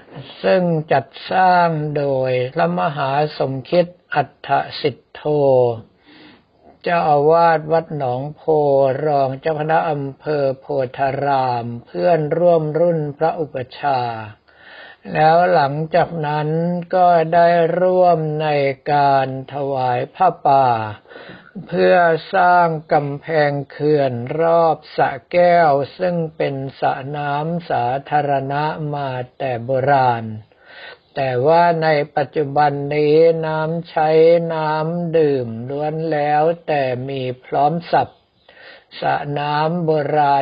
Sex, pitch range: male, 135-165 Hz